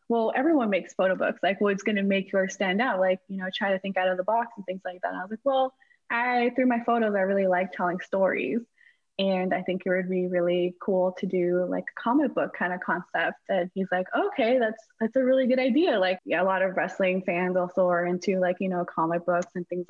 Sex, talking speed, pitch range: female, 255 wpm, 180-215 Hz